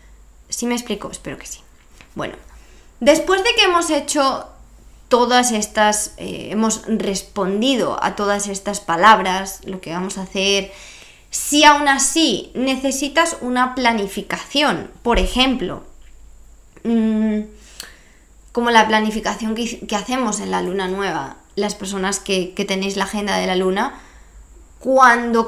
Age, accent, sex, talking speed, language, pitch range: 20-39, Spanish, female, 130 wpm, Spanish, 195-255 Hz